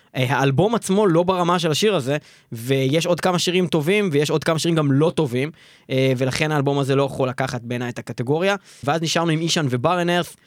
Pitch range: 135-175 Hz